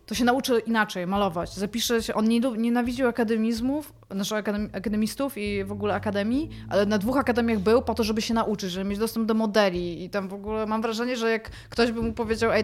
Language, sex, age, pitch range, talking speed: Polish, female, 20-39, 190-230 Hz, 210 wpm